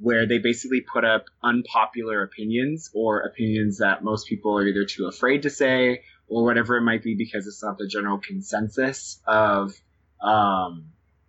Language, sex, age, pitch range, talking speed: English, male, 20-39, 105-125 Hz, 165 wpm